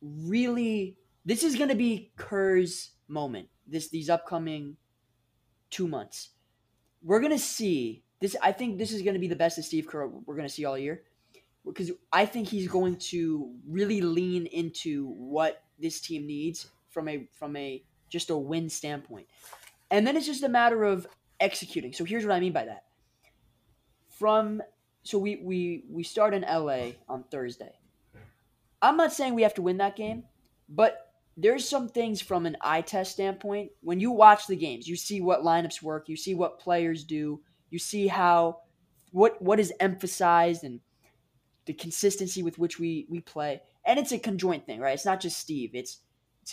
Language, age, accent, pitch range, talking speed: English, 20-39, American, 145-195 Hz, 185 wpm